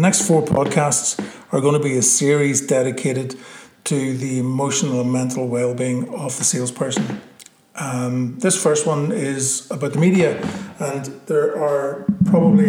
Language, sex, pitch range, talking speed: English, male, 130-150 Hz, 155 wpm